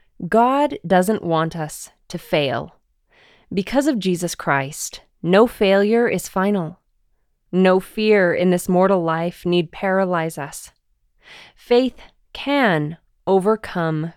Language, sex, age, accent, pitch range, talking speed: English, female, 20-39, American, 160-205 Hz, 110 wpm